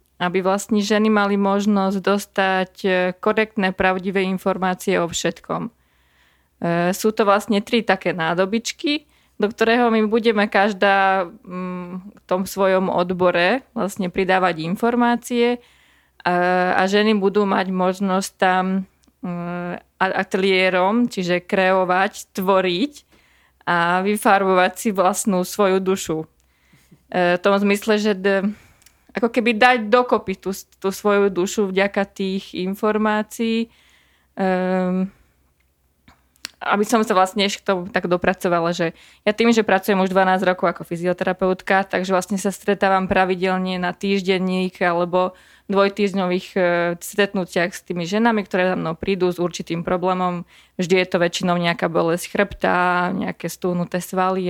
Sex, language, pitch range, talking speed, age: female, Slovak, 180-205 Hz, 120 wpm, 20-39